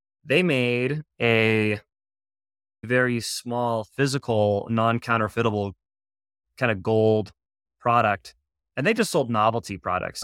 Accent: American